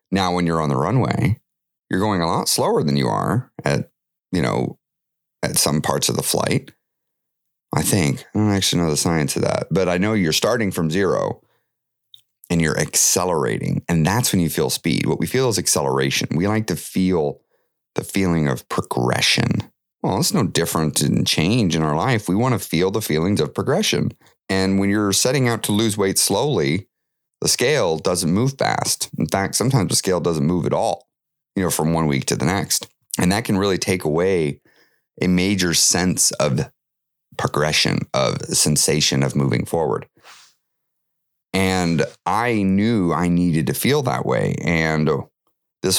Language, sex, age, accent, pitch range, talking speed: English, male, 30-49, American, 75-100 Hz, 180 wpm